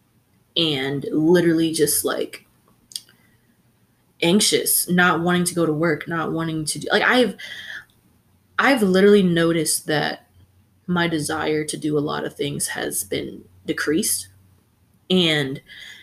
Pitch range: 150-190 Hz